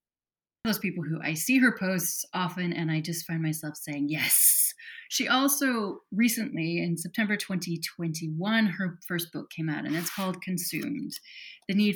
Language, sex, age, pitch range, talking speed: English, female, 30-49, 165-210 Hz, 160 wpm